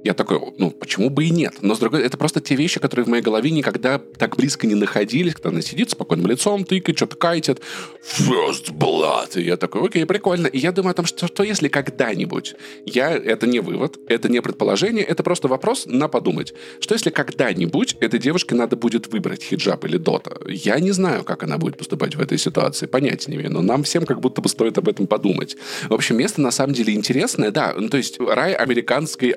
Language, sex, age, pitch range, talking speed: Russian, male, 20-39, 120-165 Hz, 220 wpm